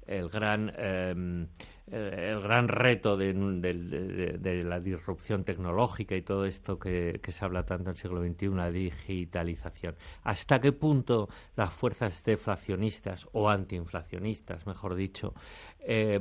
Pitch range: 90-105 Hz